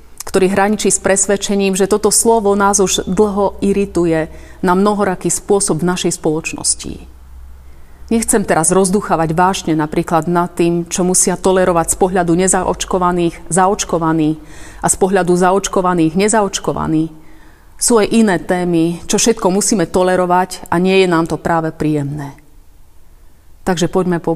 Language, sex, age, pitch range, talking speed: Slovak, female, 30-49, 170-205 Hz, 135 wpm